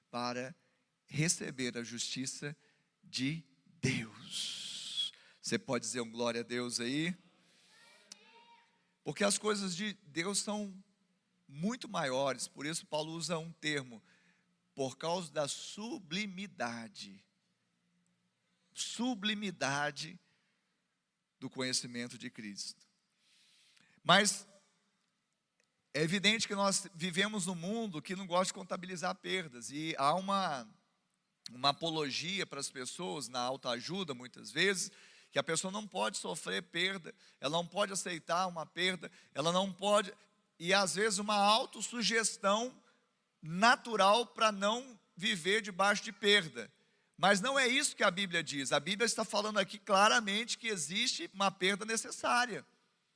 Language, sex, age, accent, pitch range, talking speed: Portuguese, male, 50-69, Brazilian, 155-210 Hz, 125 wpm